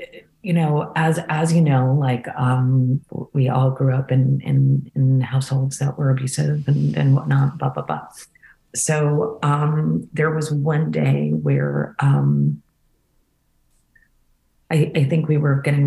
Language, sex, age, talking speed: English, female, 40-59, 150 wpm